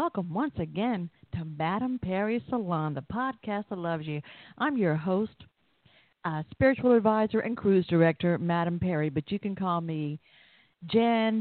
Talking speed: 155 wpm